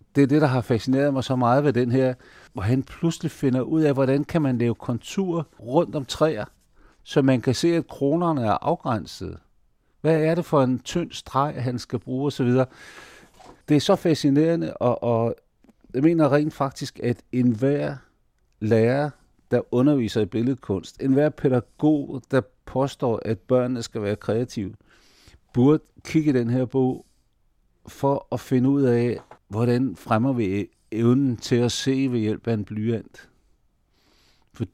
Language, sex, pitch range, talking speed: Danish, male, 115-140 Hz, 165 wpm